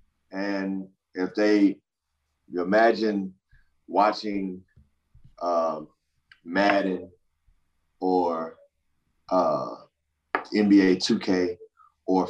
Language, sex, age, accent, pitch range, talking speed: English, male, 30-49, American, 85-100 Hz, 65 wpm